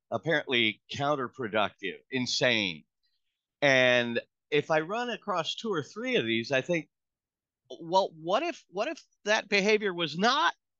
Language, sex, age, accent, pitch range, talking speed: English, male, 50-69, American, 115-185 Hz, 135 wpm